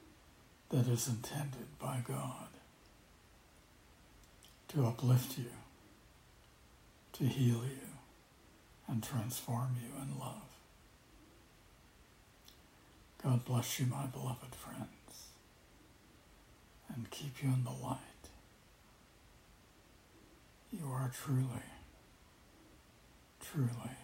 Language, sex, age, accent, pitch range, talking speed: English, male, 60-79, American, 110-130 Hz, 80 wpm